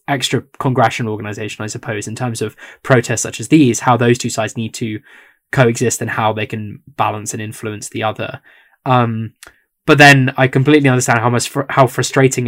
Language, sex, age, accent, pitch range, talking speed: English, male, 10-29, British, 110-130 Hz, 185 wpm